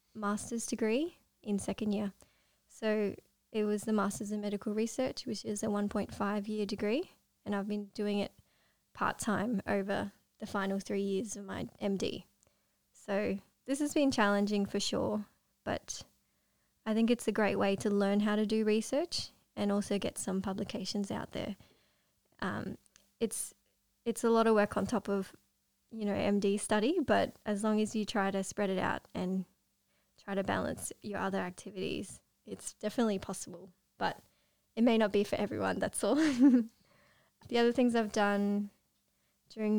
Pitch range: 200-225 Hz